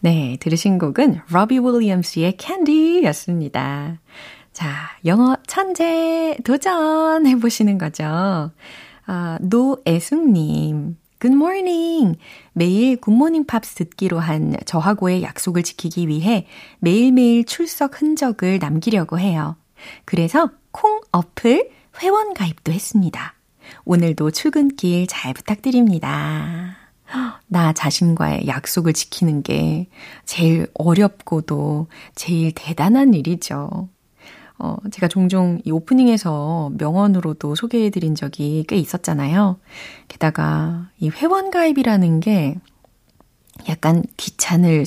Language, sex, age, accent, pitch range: Korean, female, 30-49, native, 165-240 Hz